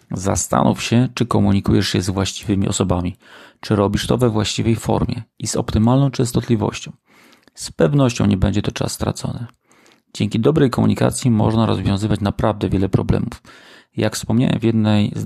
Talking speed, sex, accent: 150 wpm, male, native